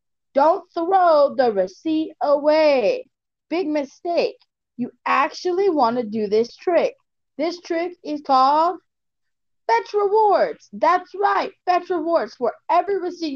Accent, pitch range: American, 250-345 Hz